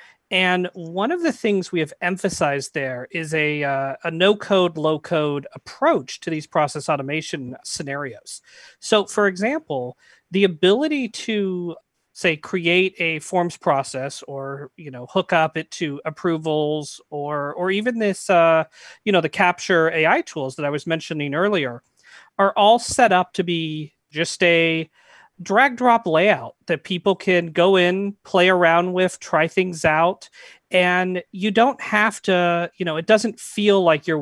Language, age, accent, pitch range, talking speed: English, 40-59, American, 150-185 Hz, 160 wpm